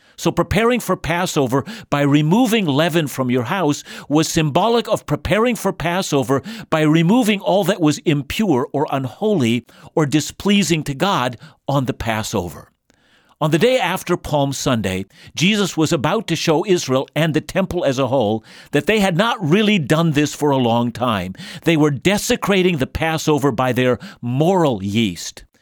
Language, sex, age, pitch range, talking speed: English, male, 50-69, 135-175 Hz, 160 wpm